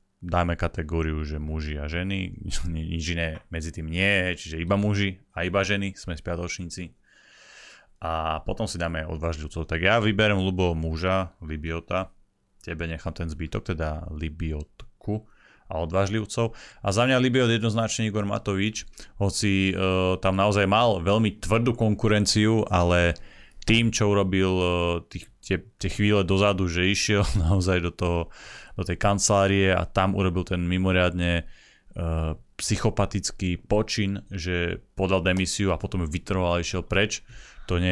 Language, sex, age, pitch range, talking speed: Slovak, male, 30-49, 85-100 Hz, 140 wpm